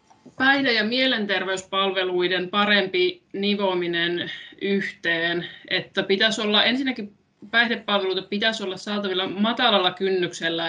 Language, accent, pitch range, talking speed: Finnish, native, 175-205 Hz, 90 wpm